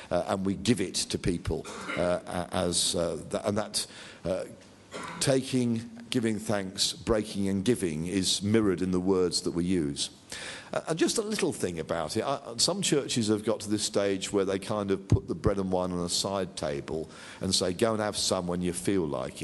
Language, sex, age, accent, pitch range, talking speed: English, male, 50-69, British, 95-135 Hz, 205 wpm